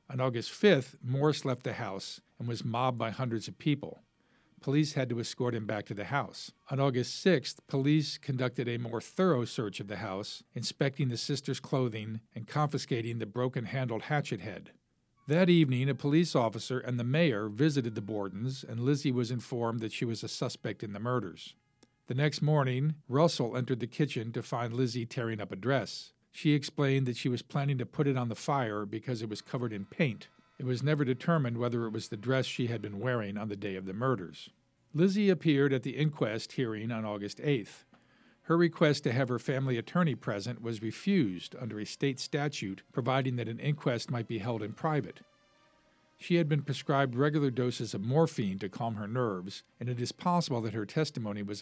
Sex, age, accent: male, 50-69, American